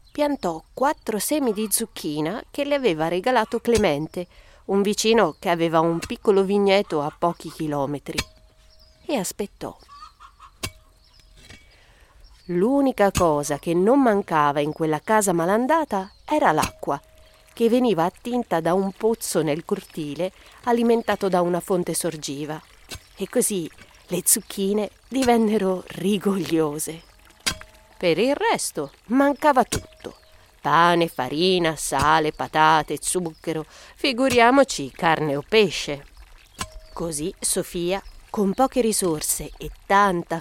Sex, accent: female, native